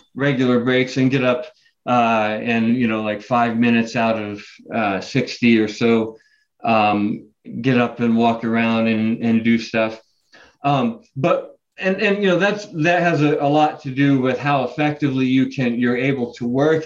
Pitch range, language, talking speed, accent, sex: 115-140 Hz, English, 180 wpm, American, male